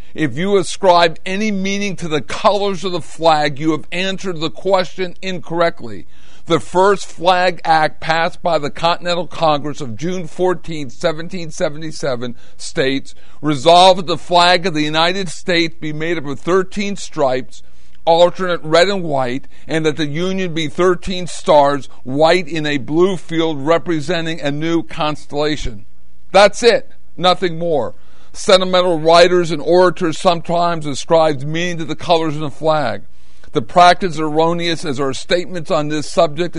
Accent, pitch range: American, 150-180 Hz